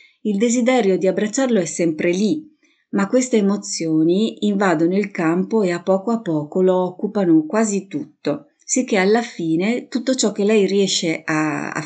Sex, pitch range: female, 160-215 Hz